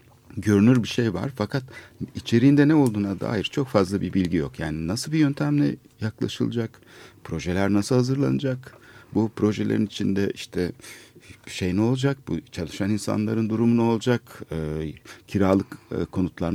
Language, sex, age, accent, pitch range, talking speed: Turkish, male, 60-79, native, 95-120 Hz, 140 wpm